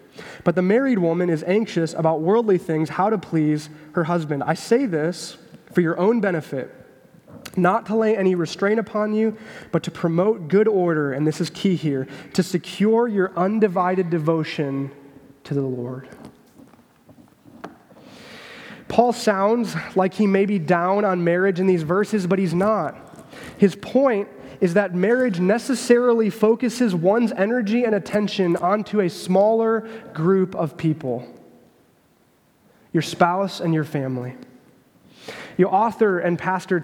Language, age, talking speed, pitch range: English, 20-39, 140 wpm, 165-215 Hz